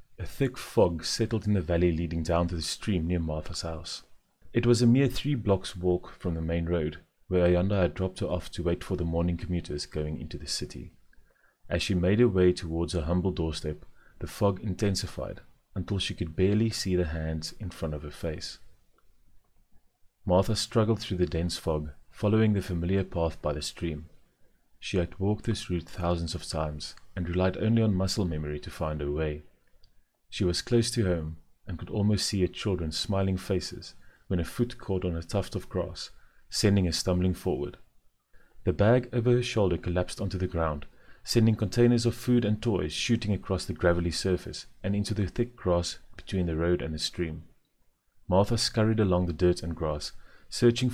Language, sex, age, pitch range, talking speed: English, male, 30-49, 80-100 Hz, 190 wpm